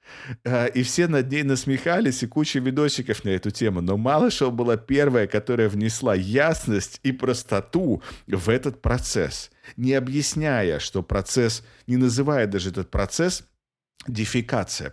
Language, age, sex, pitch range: Russian, 50-69, male, 95-125 Hz